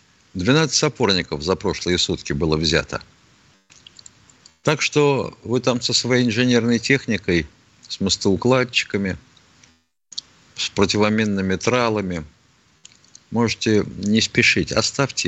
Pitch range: 85-120 Hz